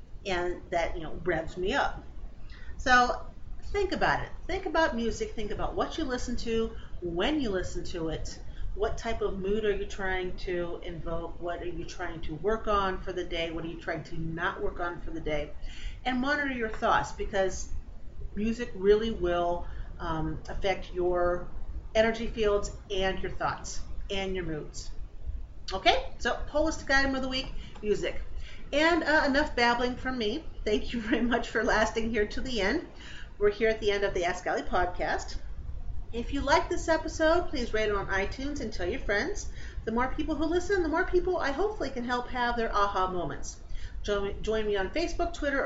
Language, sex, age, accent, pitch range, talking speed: English, female, 40-59, American, 185-270 Hz, 190 wpm